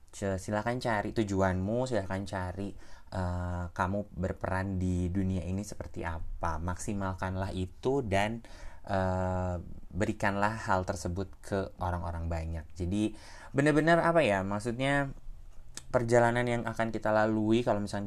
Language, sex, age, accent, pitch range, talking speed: Indonesian, male, 20-39, native, 85-105 Hz, 115 wpm